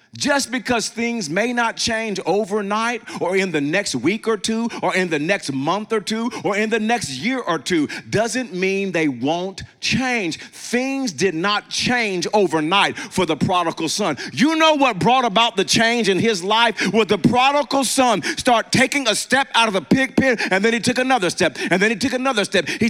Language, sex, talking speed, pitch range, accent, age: English, male, 205 wpm, 180-240 Hz, American, 40-59